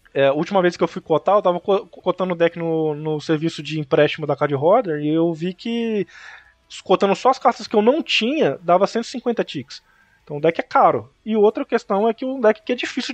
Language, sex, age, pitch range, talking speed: Portuguese, male, 20-39, 160-215 Hz, 235 wpm